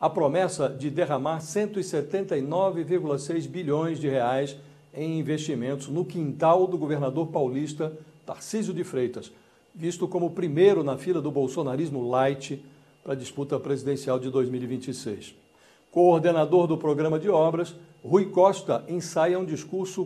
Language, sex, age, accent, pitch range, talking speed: English, male, 60-79, Brazilian, 140-180 Hz, 130 wpm